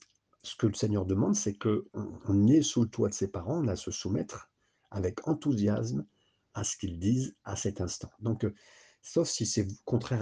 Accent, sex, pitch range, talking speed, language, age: French, male, 95-125 Hz, 195 wpm, French, 50-69